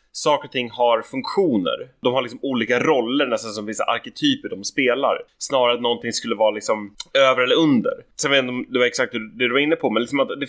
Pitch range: 115-150 Hz